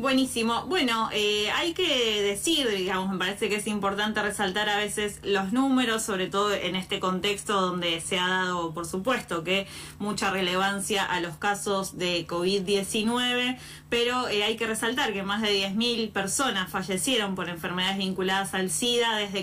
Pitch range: 195-230 Hz